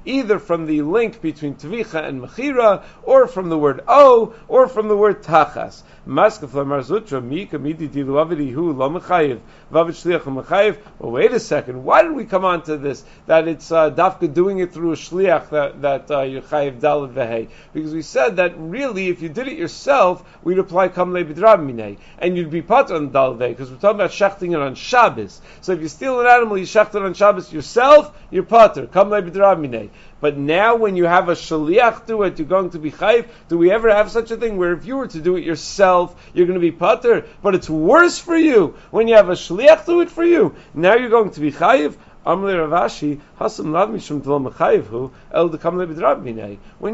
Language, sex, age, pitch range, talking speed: English, male, 50-69, 150-200 Hz, 180 wpm